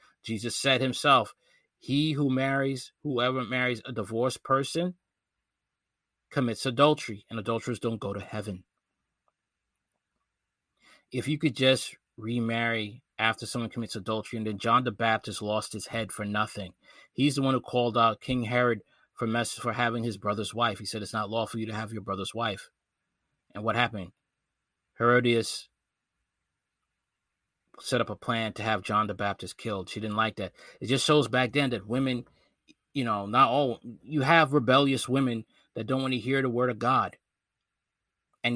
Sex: male